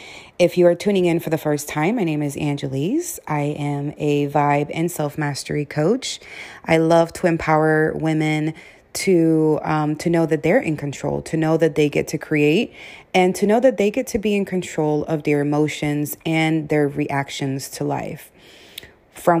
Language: English